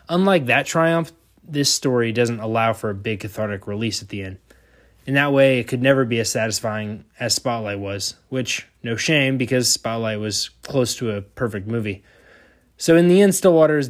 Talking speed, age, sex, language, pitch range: 190 wpm, 20-39, male, English, 110-140 Hz